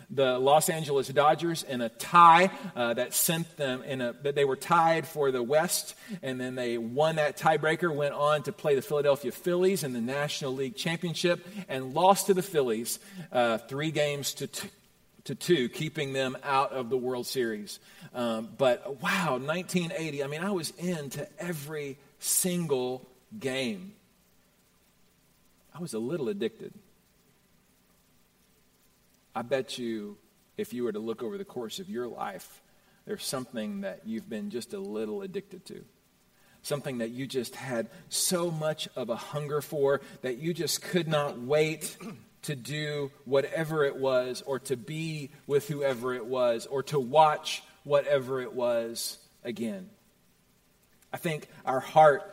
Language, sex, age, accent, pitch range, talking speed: English, male, 40-59, American, 135-195 Hz, 155 wpm